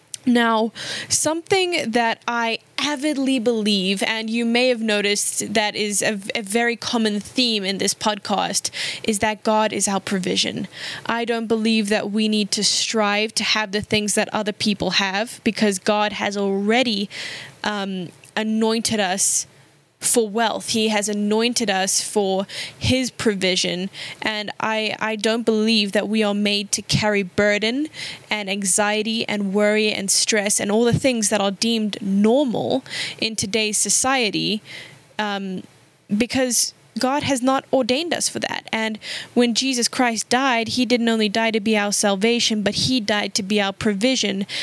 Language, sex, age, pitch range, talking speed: English, female, 10-29, 205-230 Hz, 155 wpm